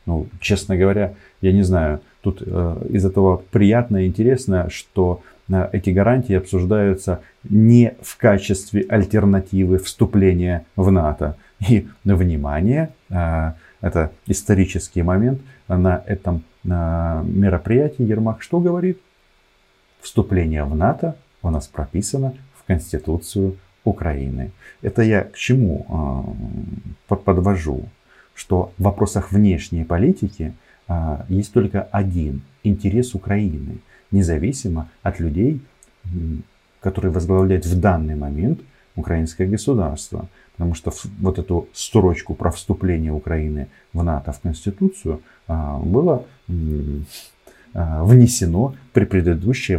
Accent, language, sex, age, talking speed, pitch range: native, Russian, male, 30-49, 100 wpm, 85-105 Hz